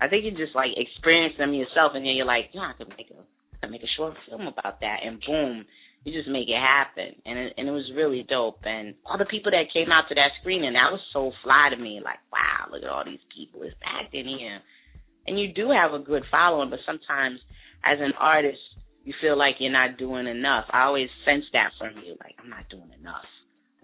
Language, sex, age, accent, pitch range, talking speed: English, female, 20-39, American, 115-145 Hz, 230 wpm